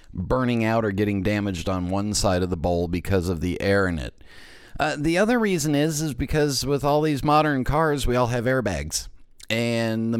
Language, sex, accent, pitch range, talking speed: English, male, American, 100-125 Hz, 205 wpm